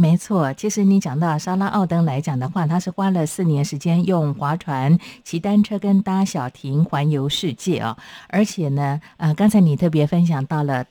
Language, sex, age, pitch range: Chinese, female, 50-69, 150-190 Hz